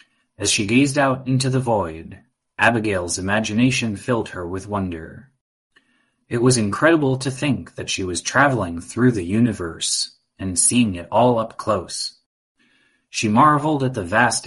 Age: 30-49